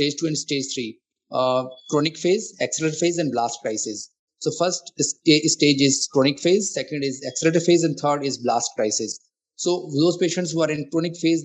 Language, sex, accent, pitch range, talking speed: English, male, Indian, 130-155 Hz, 190 wpm